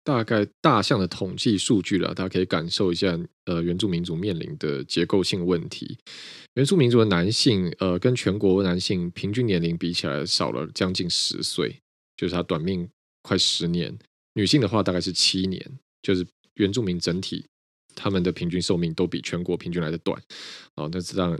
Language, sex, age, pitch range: Chinese, male, 20-39, 85-105 Hz